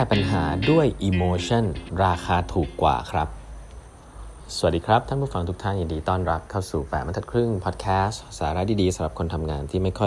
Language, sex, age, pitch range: Thai, male, 20-39, 85-110 Hz